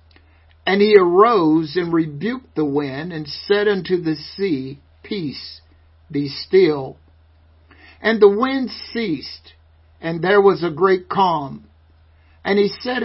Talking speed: 130 wpm